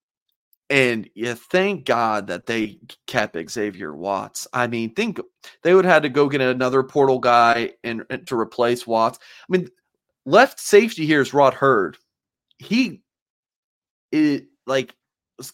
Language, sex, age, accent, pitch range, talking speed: English, male, 30-49, American, 120-140 Hz, 145 wpm